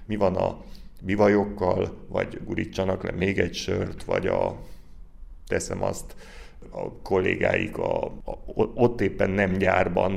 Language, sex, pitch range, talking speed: Hungarian, male, 90-110 Hz, 130 wpm